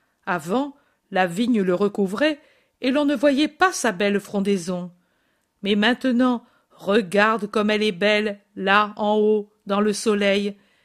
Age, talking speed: 50-69, 145 wpm